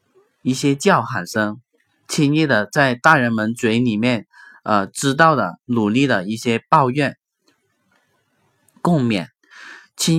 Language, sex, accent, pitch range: Chinese, male, native, 120-160 Hz